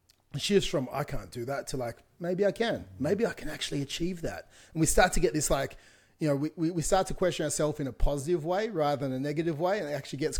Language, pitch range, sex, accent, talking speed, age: English, 150-190 Hz, male, Australian, 265 wpm, 30-49